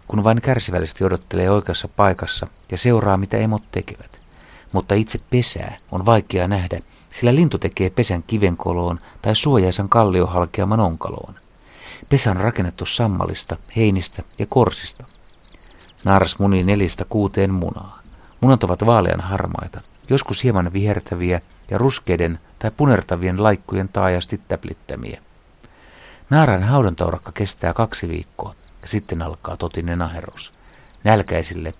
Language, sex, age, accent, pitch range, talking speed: Finnish, male, 60-79, native, 90-110 Hz, 120 wpm